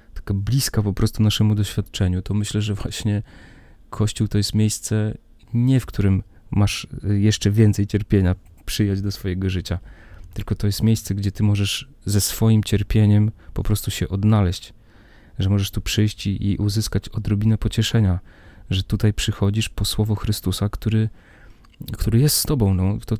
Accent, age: native, 30-49